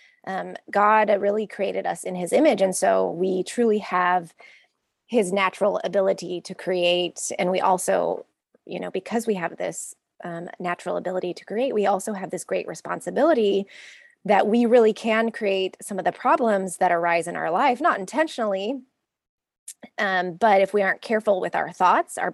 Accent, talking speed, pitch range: American, 170 wpm, 175-215 Hz